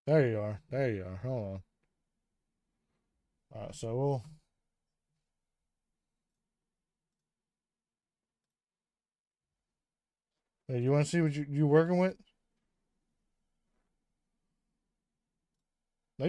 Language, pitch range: English, 120-155 Hz